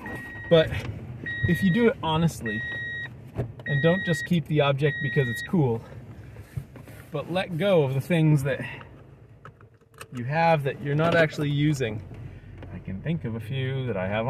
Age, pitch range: 30-49, 110-140 Hz